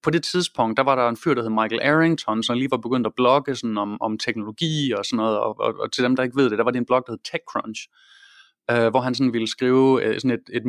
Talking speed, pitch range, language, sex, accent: 290 wpm, 125-155 Hz, English, male, Danish